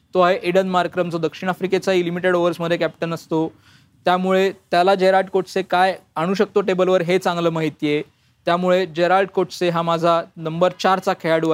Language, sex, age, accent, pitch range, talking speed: Marathi, male, 20-39, native, 175-200 Hz, 160 wpm